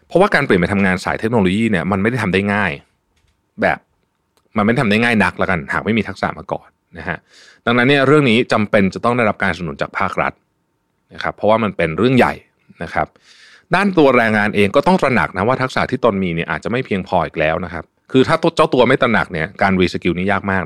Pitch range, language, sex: 85-120 Hz, Thai, male